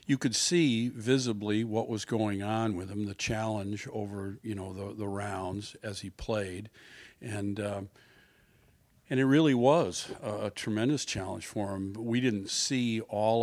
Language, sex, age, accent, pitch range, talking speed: English, male, 50-69, American, 100-120 Hz, 170 wpm